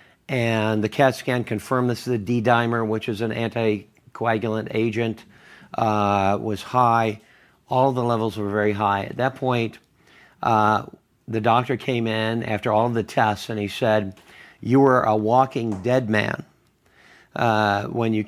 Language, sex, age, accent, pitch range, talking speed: English, male, 50-69, American, 105-125 Hz, 160 wpm